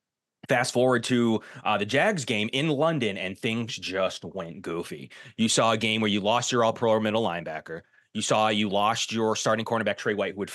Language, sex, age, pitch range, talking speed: English, male, 30-49, 100-130 Hz, 205 wpm